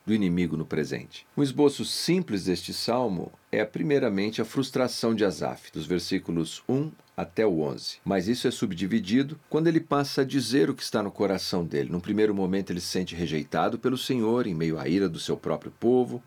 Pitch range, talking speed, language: 90-125 Hz, 190 wpm, Portuguese